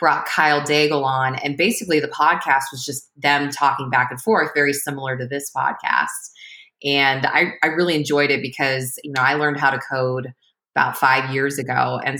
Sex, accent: female, American